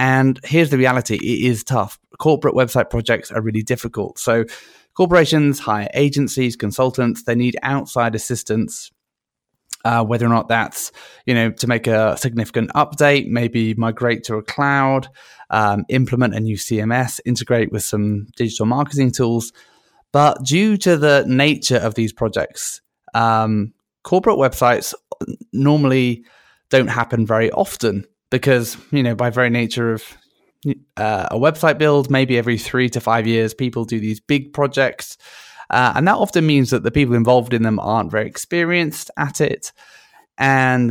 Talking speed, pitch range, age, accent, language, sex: 155 wpm, 115-140 Hz, 20-39, British, English, male